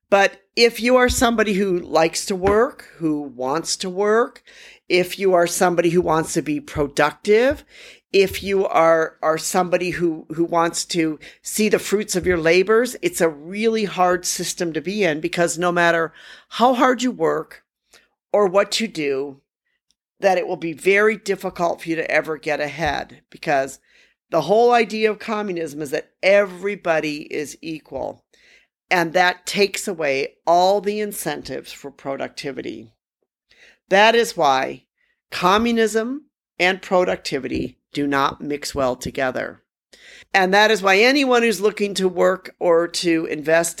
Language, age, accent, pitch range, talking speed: English, 50-69, American, 160-205 Hz, 150 wpm